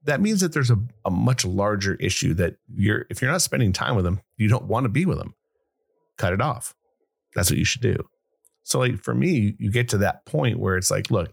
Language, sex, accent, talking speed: English, male, American, 245 wpm